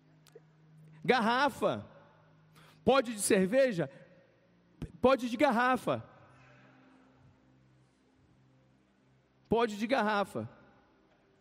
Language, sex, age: Portuguese, male, 50-69